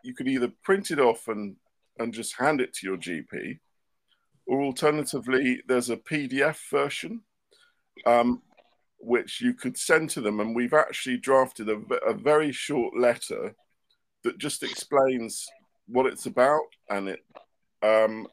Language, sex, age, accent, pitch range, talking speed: English, male, 50-69, British, 120-150 Hz, 145 wpm